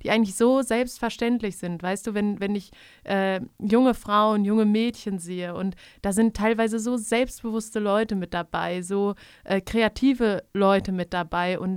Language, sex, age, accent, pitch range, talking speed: German, female, 30-49, German, 190-225 Hz, 165 wpm